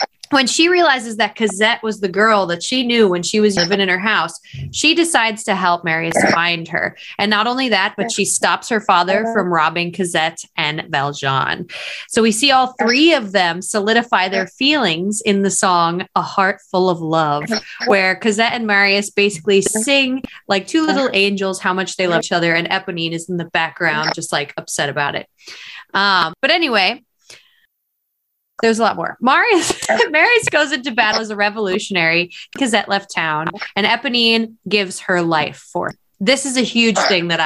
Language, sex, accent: English, female, American